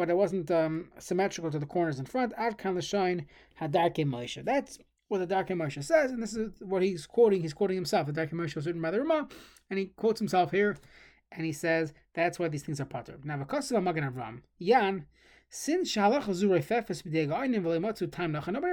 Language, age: English, 30-49